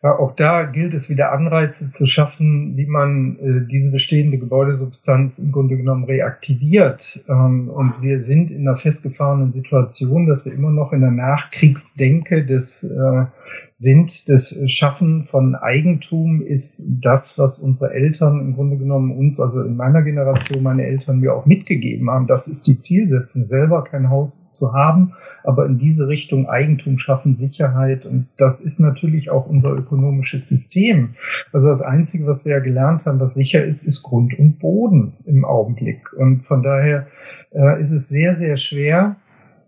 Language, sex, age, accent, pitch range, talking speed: German, male, 50-69, German, 135-160 Hz, 165 wpm